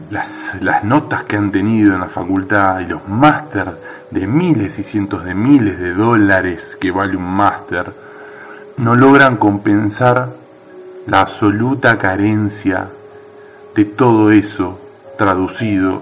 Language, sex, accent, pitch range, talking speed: Spanish, male, Argentinian, 100-140 Hz, 125 wpm